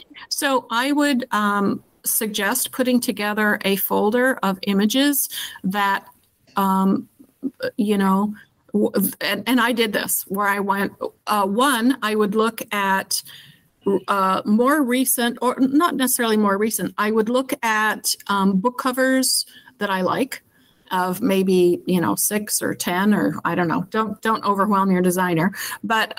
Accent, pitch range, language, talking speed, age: American, 195-250 Hz, English, 145 wpm, 50-69